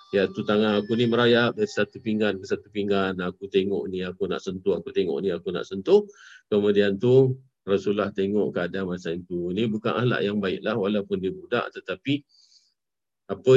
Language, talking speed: Malay, 180 wpm